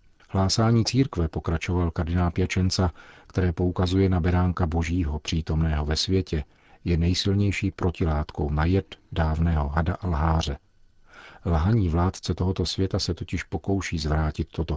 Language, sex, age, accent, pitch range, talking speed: Czech, male, 40-59, native, 80-95 Hz, 120 wpm